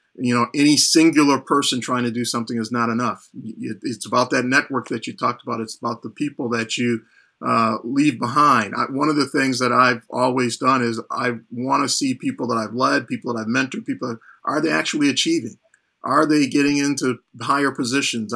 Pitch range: 120-140 Hz